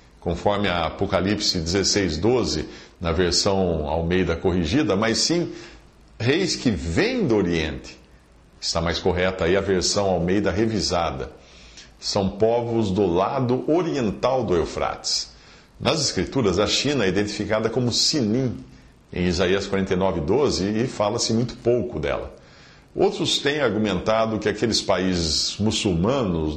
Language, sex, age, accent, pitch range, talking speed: English, male, 50-69, Brazilian, 90-115 Hz, 120 wpm